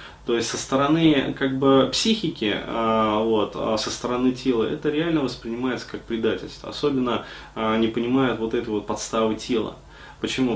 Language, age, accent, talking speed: Russian, 20-39, native, 140 wpm